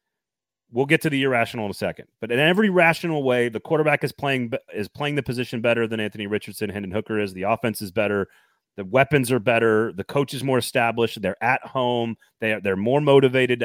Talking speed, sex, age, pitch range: 215 wpm, male, 30-49, 115-150 Hz